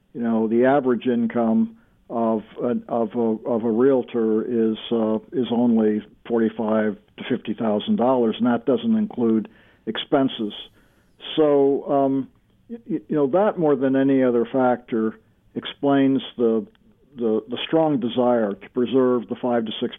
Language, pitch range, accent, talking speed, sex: English, 115-140 Hz, American, 150 wpm, male